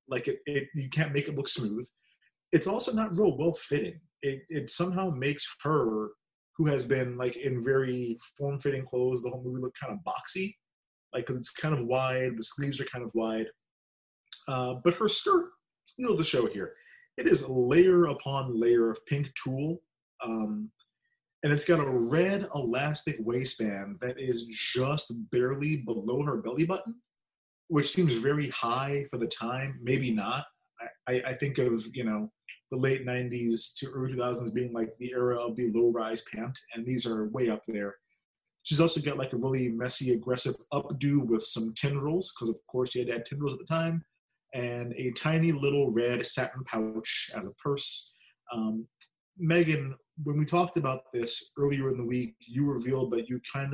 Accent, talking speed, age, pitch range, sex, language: American, 180 wpm, 30-49, 120-150 Hz, male, English